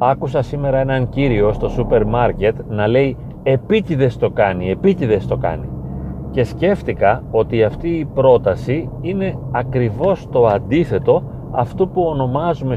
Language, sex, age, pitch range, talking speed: Greek, male, 40-59, 115-165 Hz, 130 wpm